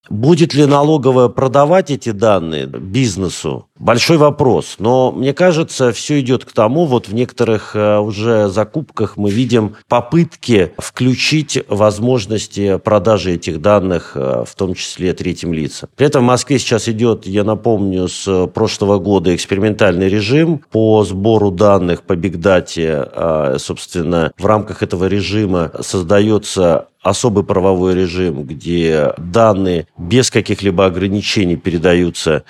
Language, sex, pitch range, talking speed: Russian, male, 100-130 Hz, 125 wpm